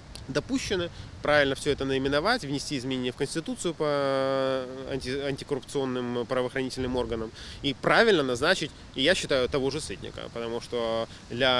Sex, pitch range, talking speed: male, 115-145 Hz, 130 wpm